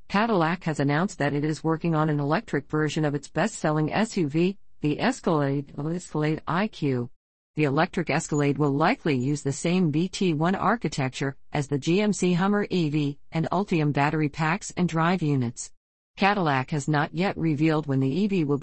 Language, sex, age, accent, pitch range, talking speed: English, female, 50-69, American, 145-175 Hz, 160 wpm